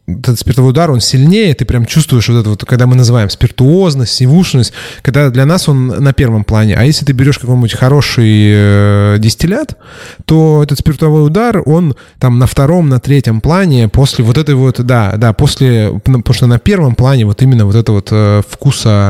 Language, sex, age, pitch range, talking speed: Russian, male, 20-39, 110-135 Hz, 185 wpm